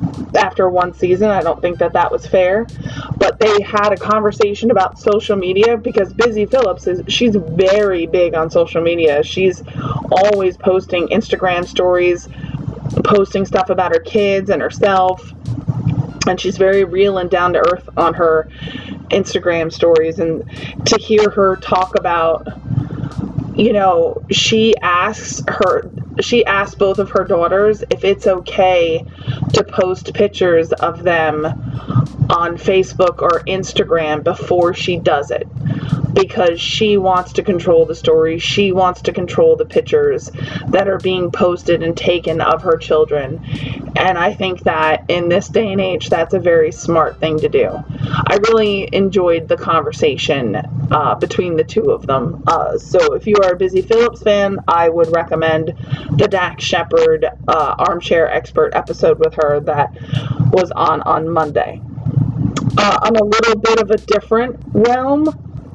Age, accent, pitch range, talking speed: 20-39, American, 160-205 Hz, 155 wpm